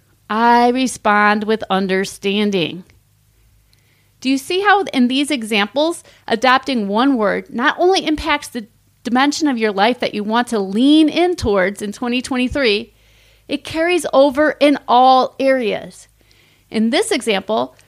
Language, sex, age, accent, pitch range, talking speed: English, female, 40-59, American, 210-310 Hz, 135 wpm